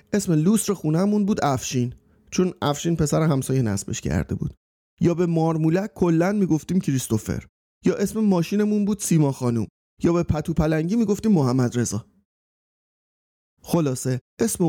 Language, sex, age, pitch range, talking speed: Persian, male, 30-49, 125-170 Hz, 140 wpm